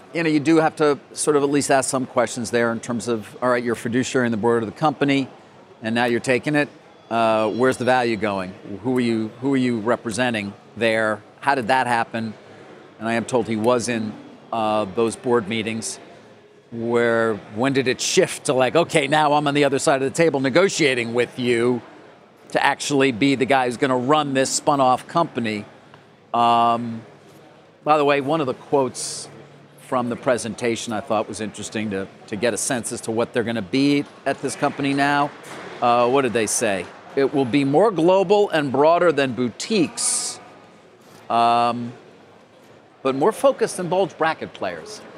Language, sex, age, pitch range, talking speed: English, male, 40-59, 115-145 Hz, 195 wpm